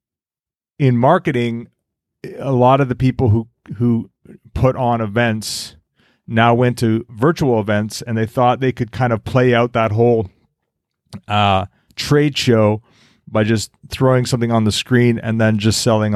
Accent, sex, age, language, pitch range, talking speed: American, male, 30-49, English, 105-125 Hz, 155 wpm